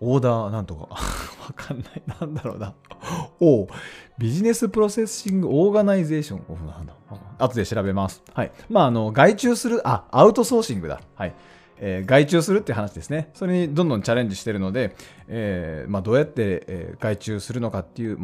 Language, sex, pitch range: Japanese, male, 100-160 Hz